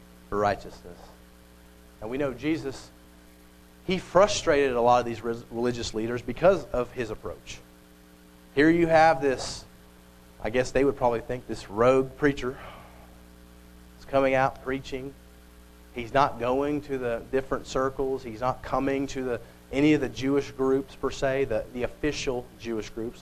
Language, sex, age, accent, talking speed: English, male, 40-59, American, 155 wpm